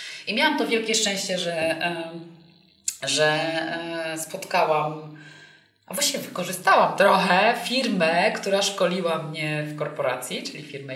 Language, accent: Polish, native